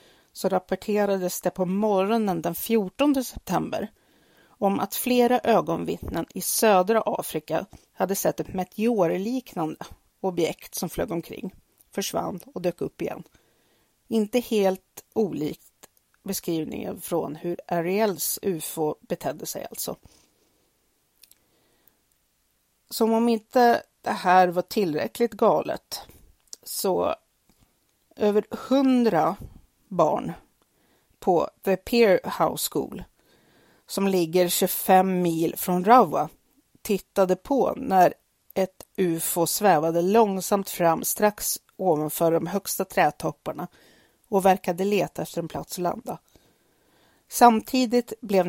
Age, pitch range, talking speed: 40-59, 175-225 Hz, 105 wpm